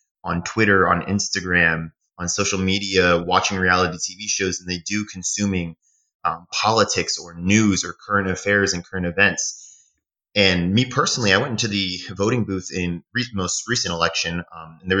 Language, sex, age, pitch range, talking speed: English, male, 20-39, 90-110 Hz, 170 wpm